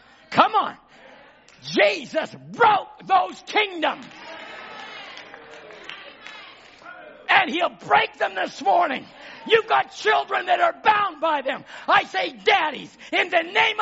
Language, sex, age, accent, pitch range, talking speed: English, male, 50-69, American, 240-360 Hz, 115 wpm